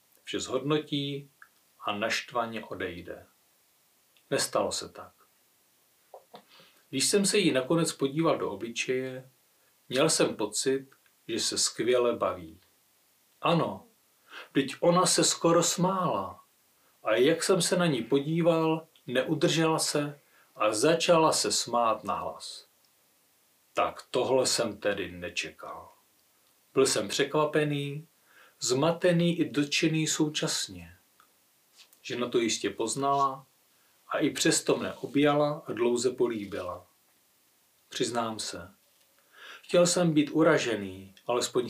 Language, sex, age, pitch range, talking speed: Czech, male, 40-59, 130-165 Hz, 110 wpm